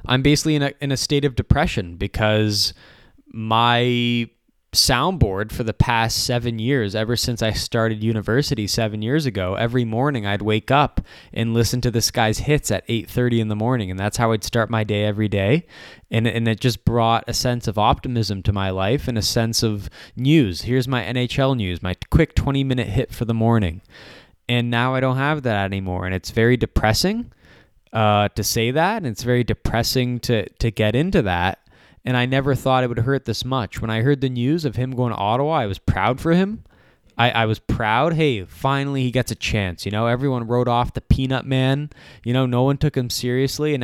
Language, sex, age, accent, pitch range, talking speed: English, male, 20-39, American, 110-135 Hz, 210 wpm